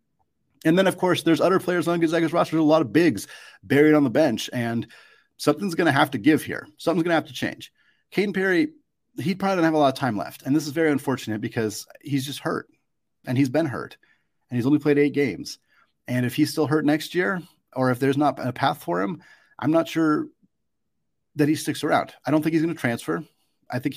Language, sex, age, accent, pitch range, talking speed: English, male, 30-49, American, 115-155 Hz, 235 wpm